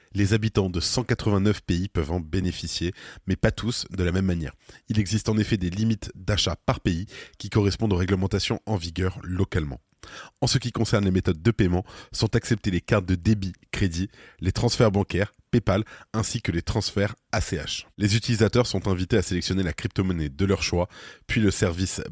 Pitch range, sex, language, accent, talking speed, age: 90-110 Hz, male, French, French, 185 wpm, 20-39